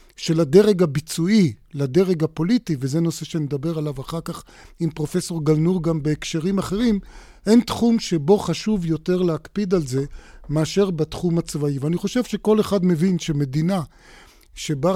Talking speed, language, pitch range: 140 wpm, Hebrew, 150-185 Hz